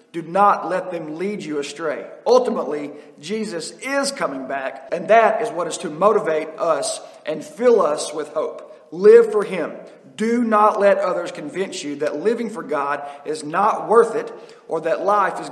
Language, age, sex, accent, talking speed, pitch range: English, 40-59, male, American, 180 wpm, 170-225 Hz